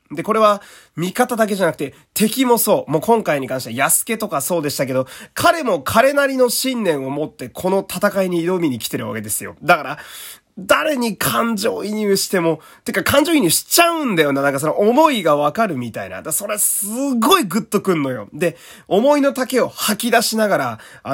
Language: Japanese